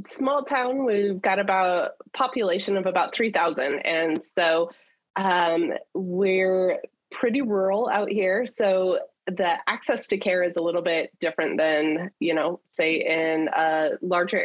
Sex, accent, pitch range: female, American, 170-205 Hz